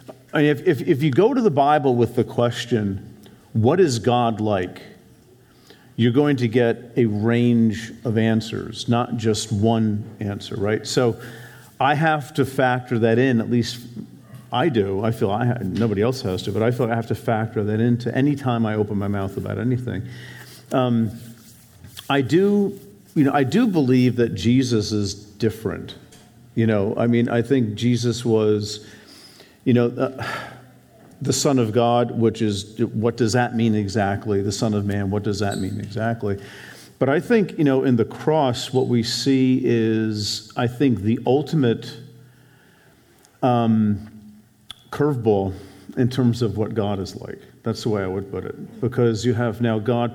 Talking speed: 175 wpm